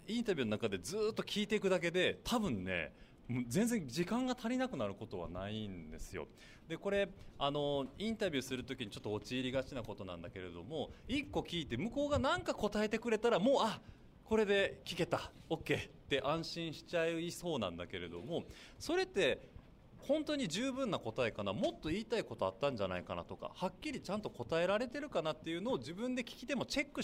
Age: 30-49